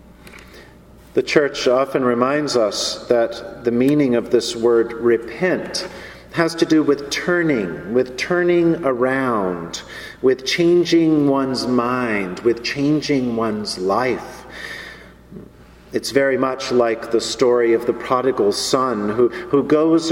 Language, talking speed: English, 120 wpm